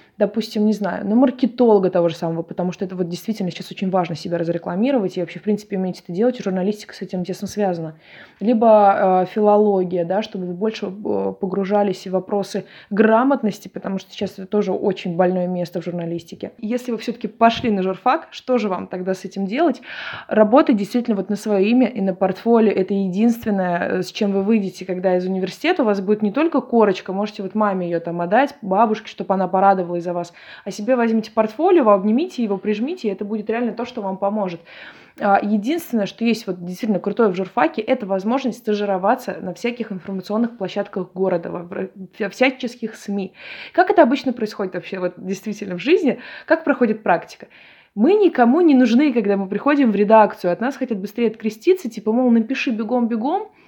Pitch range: 190-235 Hz